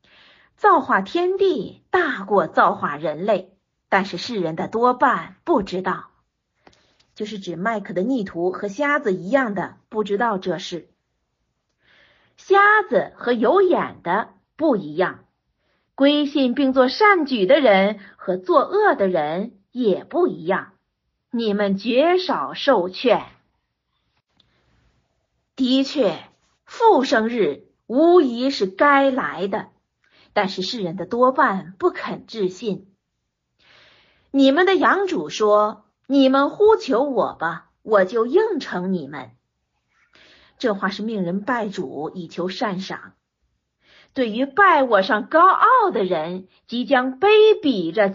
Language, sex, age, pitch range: Chinese, female, 50-69, 195-310 Hz